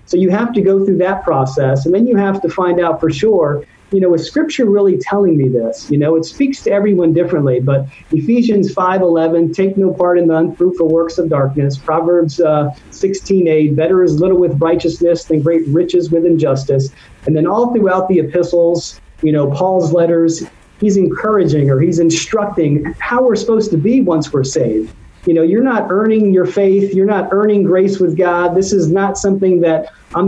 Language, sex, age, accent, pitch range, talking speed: English, male, 40-59, American, 160-195 Hz, 195 wpm